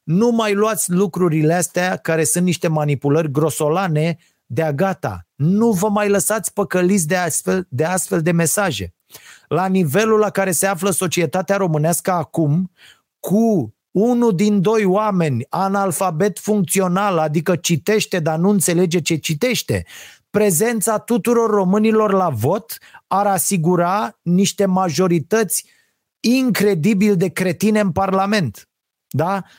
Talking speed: 120 wpm